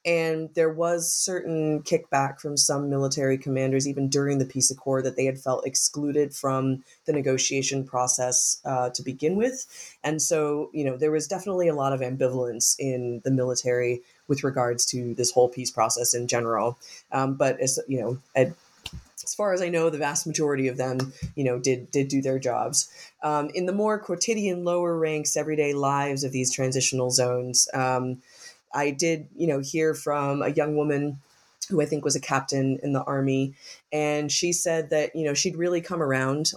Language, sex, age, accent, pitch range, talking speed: English, female, 20-39, American, 130-155 Hz, 185 wpm